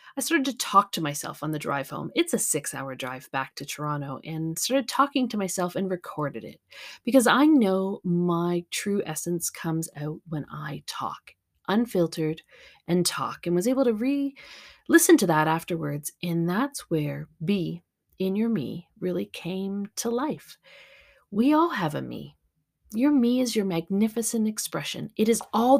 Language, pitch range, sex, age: English, 170-250 Hz, female, 40-59